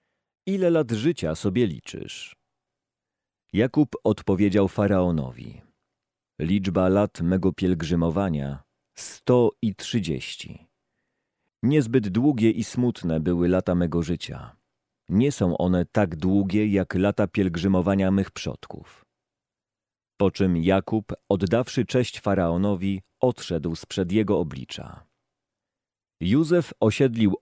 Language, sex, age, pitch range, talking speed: Polish, male, 40-59, 90-110 Hz, 100 wpm